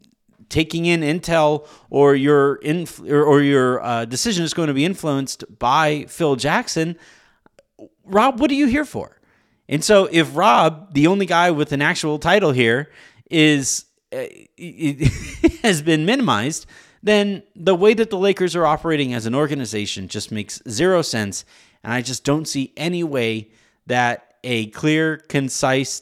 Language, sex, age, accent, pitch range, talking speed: English, male, 30-49, American, 110-160 Hz, 155 wpm